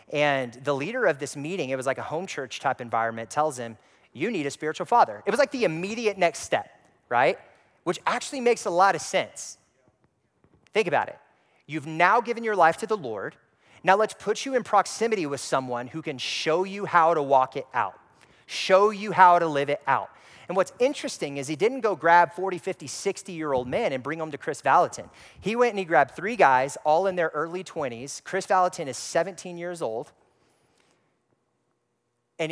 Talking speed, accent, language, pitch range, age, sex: 205 wpm, American, English, 140-195 Hz, 30-49, male